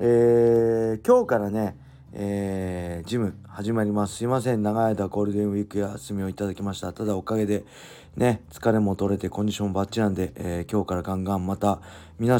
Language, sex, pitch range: Japanese, male, 90-115 Hz